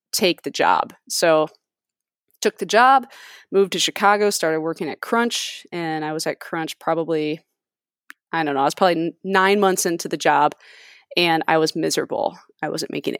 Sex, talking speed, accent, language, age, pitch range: female, 175 wpm, American, English, 20-39, 165-200 Hz